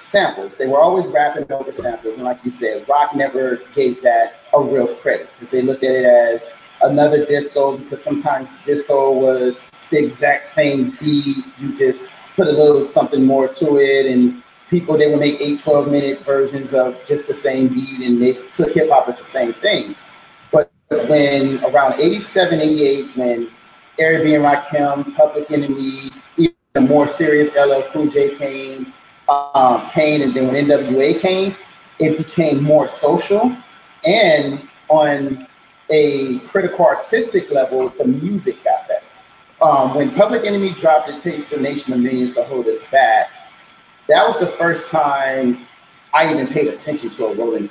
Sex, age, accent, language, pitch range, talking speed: male, 30-49, American, English, 135-190 Hz, 165 wpm